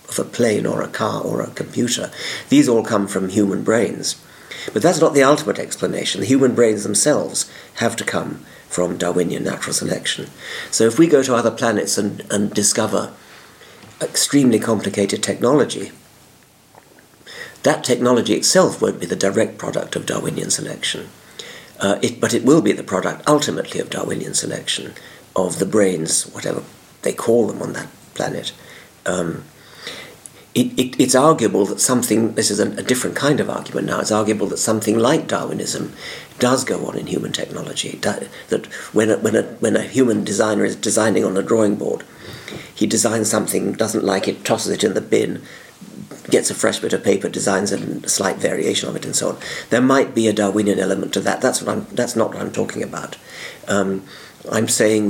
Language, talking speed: English, 180 wpm